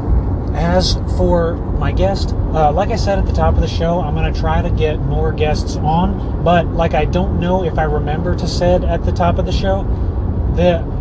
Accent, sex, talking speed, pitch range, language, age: American, male, 220 wpm, 80-95 Hz, English, 30-49